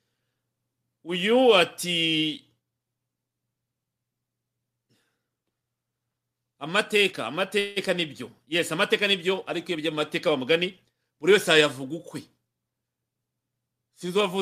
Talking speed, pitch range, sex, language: 70 wpm, 140-185 Hz, male, English